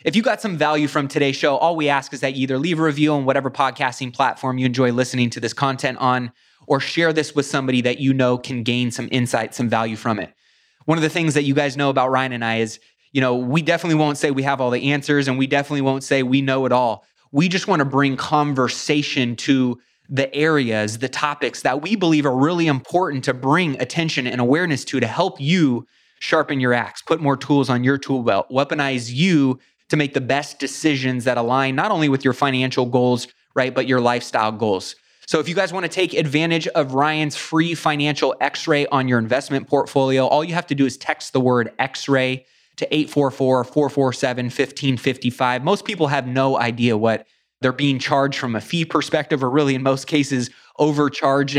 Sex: male